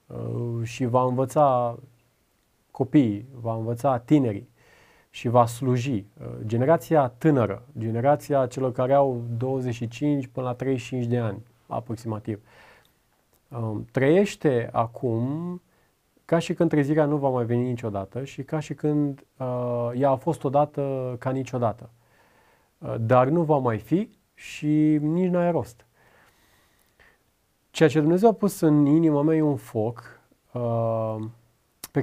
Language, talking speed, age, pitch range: Romanian, 125 wpm, 30-49, 120-155 Hz